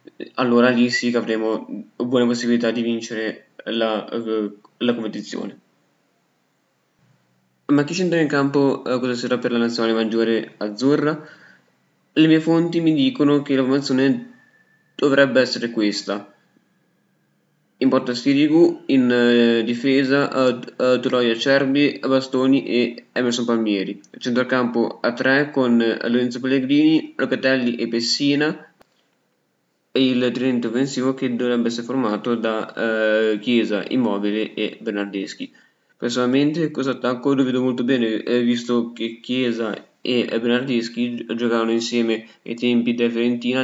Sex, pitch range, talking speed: male, 115-130 Hz, 125 wpm